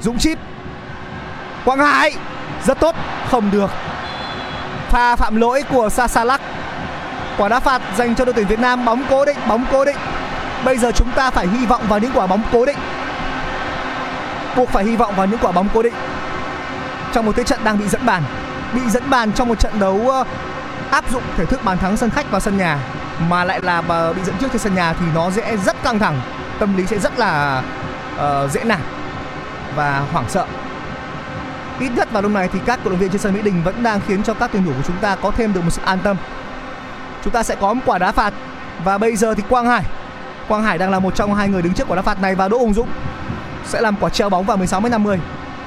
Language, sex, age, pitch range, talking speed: Vietnamese, male, 20-39, 190-245 Hz, 225 wpm